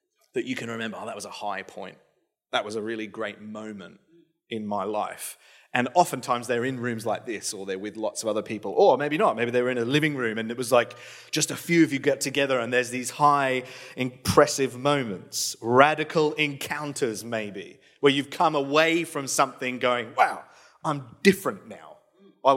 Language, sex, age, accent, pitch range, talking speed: English, male, 30-49, British, 120-150 Hz, 200 wpm